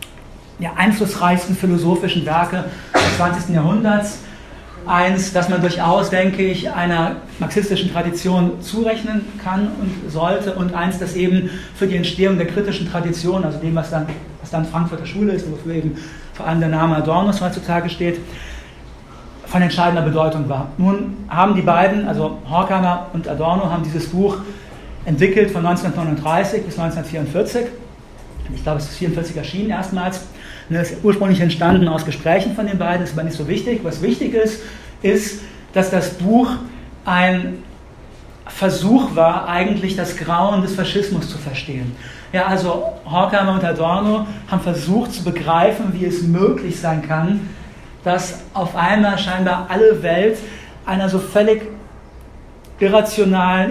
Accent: German